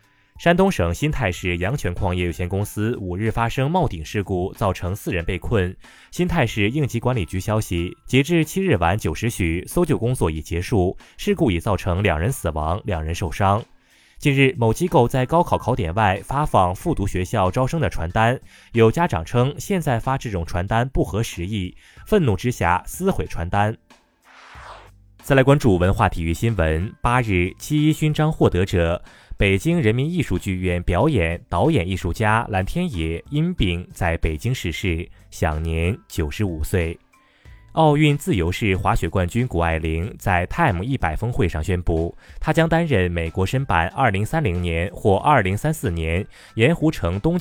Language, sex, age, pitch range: Chinese, male, 20-39, 90-130 Hz